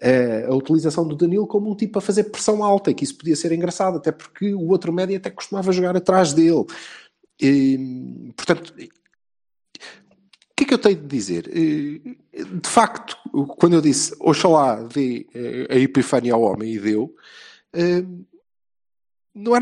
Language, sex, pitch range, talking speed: Portuguese, male, 140-205 Hz, 155 wpm